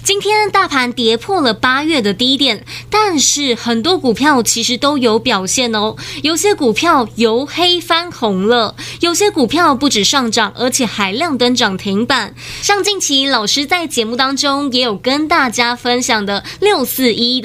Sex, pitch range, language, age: female, 235-335 Hz, Chinese, 20-39